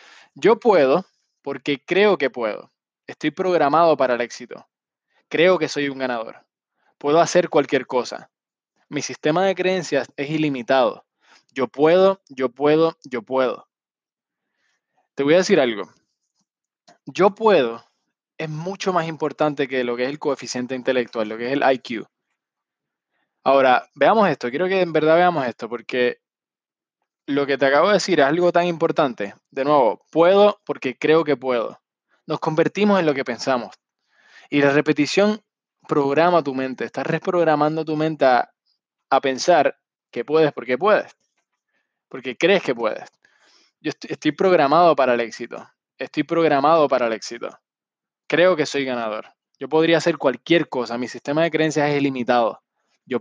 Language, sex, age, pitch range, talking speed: Spanish, male, 20-39, 130-165 Hz, 155 wpm